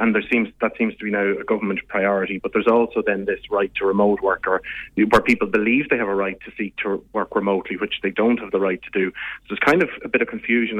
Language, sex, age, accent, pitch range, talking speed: English, male, 30-49, Irish, 100-115 Hz, 270 wpm